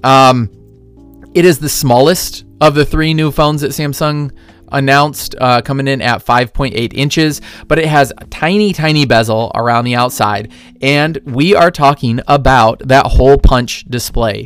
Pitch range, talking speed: 115-150 Hz, 160 wpm